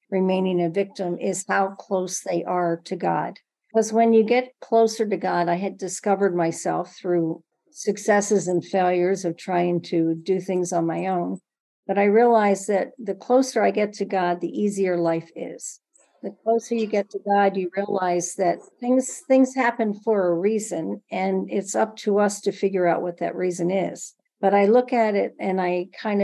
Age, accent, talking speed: 50-69, American, 190 wpm